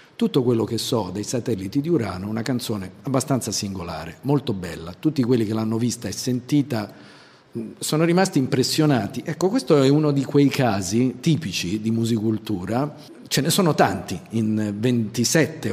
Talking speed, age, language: 155 wpm, 50-69, Italian